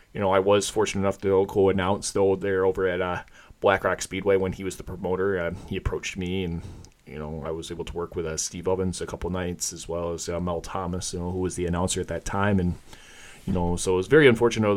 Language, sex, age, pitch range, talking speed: English, male, 20-39, 90-95 Hz, 250 wpm